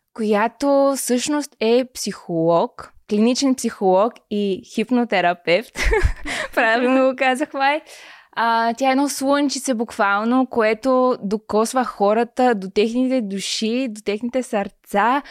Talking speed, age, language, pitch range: 100 wpm, 20-39, Bulgarian, 195-235 Hz